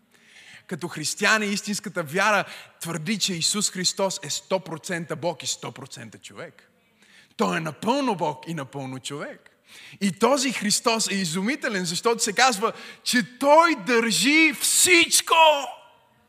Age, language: 20-39, Bulgarian